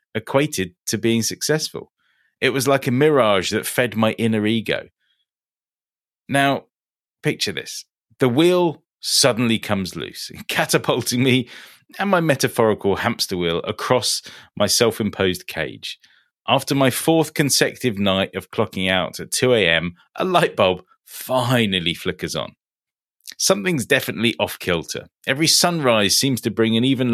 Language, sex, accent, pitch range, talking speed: English, male, British, 105-140 Hz, 130 wpm